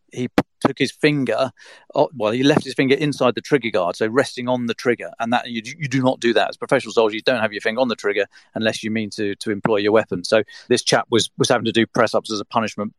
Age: 40-59